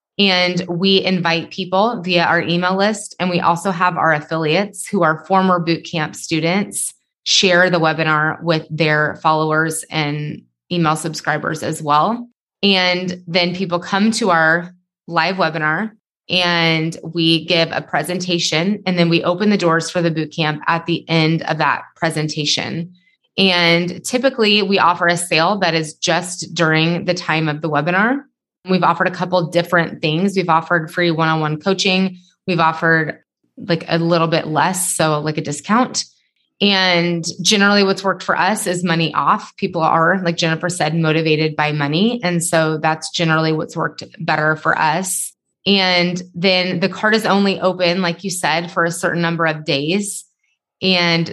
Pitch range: 160-185 Hz